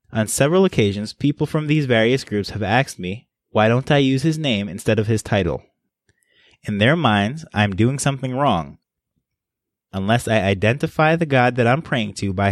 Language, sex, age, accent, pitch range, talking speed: English, male, 20-39, American, 100-135 Hz, 180 wpm